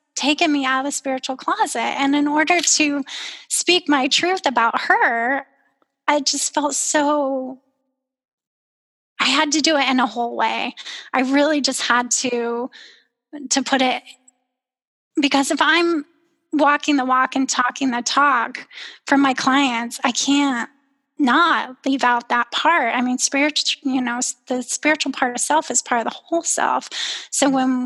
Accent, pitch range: American, 255-290 Hz